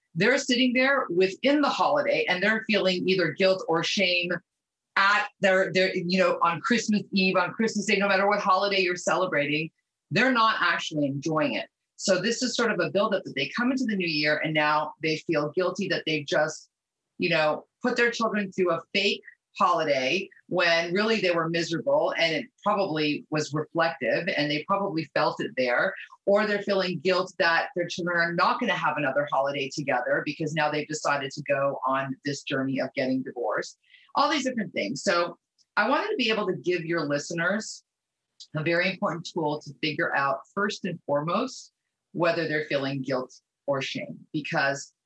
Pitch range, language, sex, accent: 150-205 Hz, English, female, American